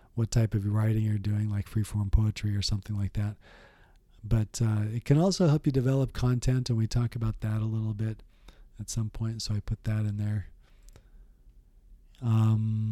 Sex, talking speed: male, 185 wpm